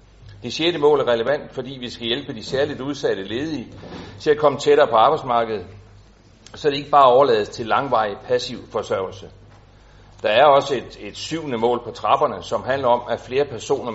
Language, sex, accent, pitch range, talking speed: Danish, male, native, 105-145 Hz, 185 wpm